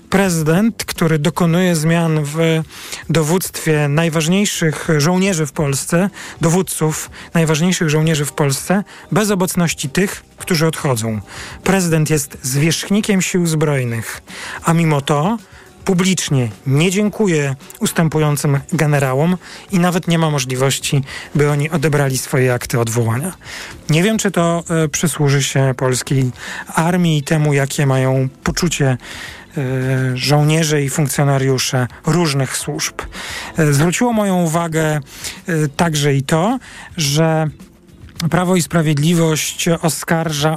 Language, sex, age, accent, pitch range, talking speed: Polish, male, 40-59, native, 145-170 Hz, 110 wpm